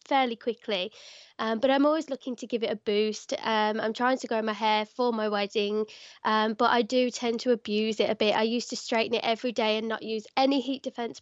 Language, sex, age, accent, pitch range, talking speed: English, female, 20-39, British, 220-265 Hz, 240 wpm